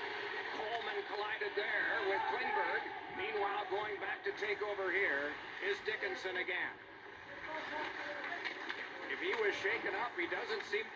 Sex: male